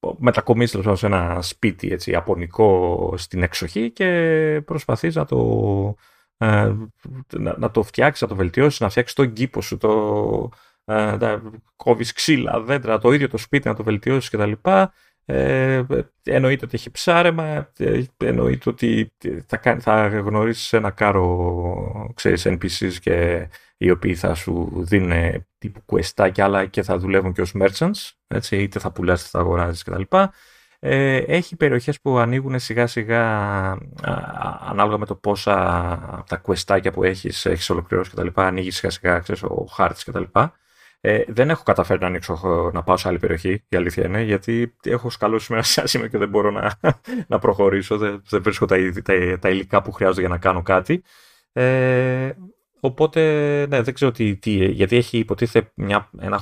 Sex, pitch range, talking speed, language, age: male, 95-125 Hz, 155 wpm, Greek, 30-49